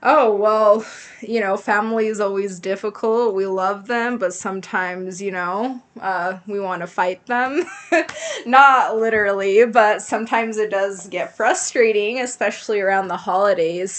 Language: English